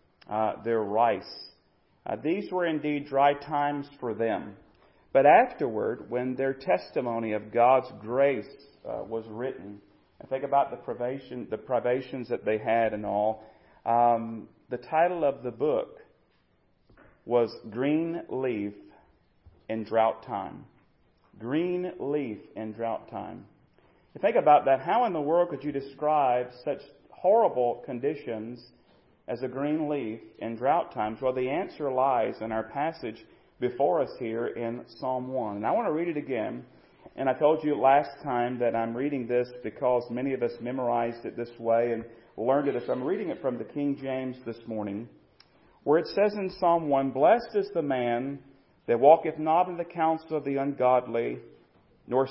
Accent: American